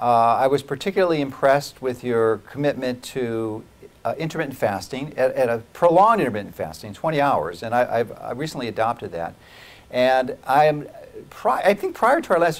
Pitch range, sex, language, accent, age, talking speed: 125-165 Hz, male, English, American, 50-69, 160 wpm